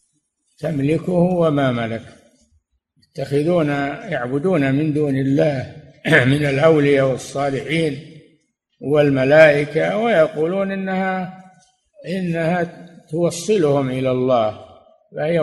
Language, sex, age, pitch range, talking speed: Arabic, male, 60-79, 130-175 Hz, 75 wpm